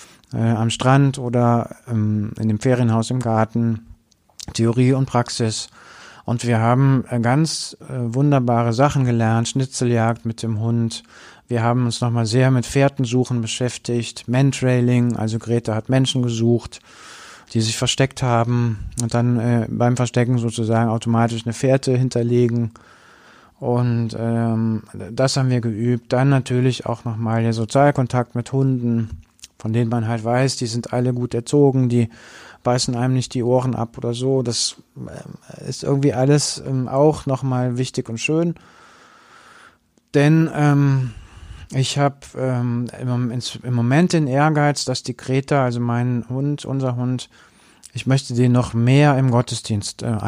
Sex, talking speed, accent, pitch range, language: male, 145 wpm, German, 115-130 Hz, German